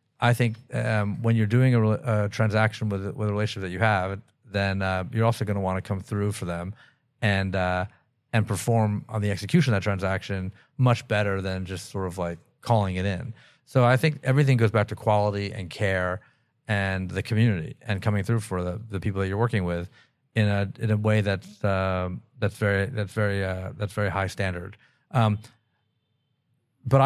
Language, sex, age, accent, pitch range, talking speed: English, male, 40-59, American, 95-115 Hz, 200 wpm